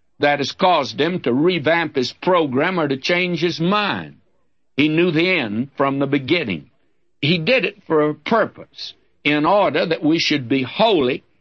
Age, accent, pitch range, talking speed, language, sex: 60-79, American, 130-165 Hz, 175 wpm, English, male